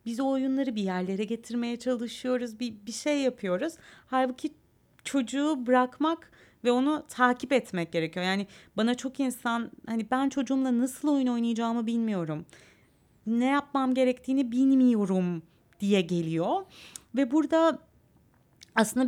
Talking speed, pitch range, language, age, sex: 120 wpm, 195-255 Hz, Turkish, 30-49, female